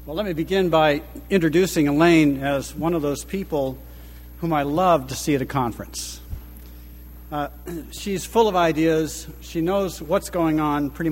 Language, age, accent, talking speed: English, 60-79, American, 165 wpm